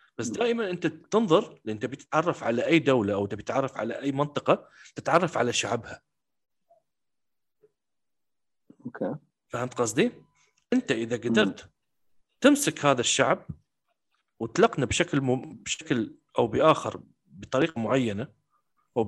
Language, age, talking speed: English, 40-59, 110 wpm